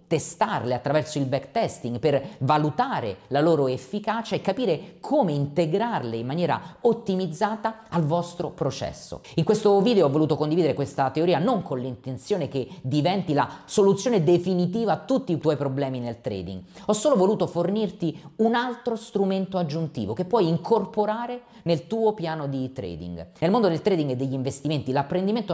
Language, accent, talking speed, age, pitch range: Italian, native, 155 wpm, 40-59, 145-210 Hz